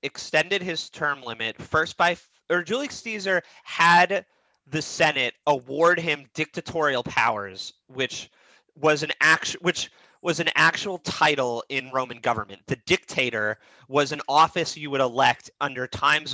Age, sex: 30-49, male